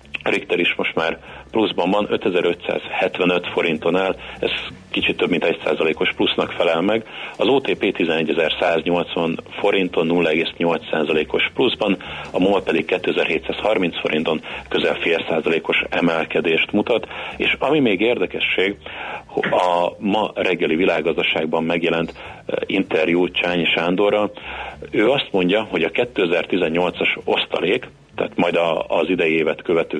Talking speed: 115 wpm